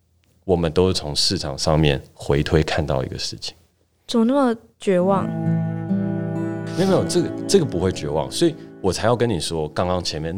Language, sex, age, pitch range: Chinese, male, 30-49, 80-110 Hz